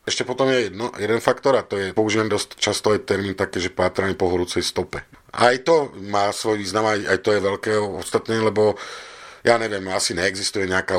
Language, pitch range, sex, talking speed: Slovak, 90-110 Hz, male, 200 wpm